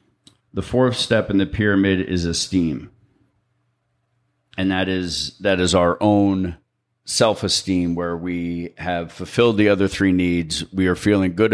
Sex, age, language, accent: male, 40-59, English, American